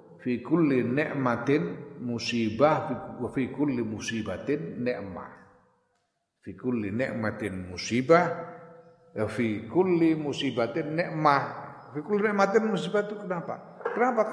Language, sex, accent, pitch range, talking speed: Indonesian, male, native, 135-200 Hz, 75 wpm